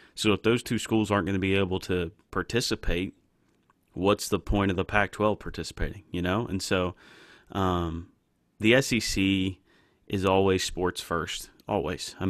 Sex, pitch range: male, 90-105 Hz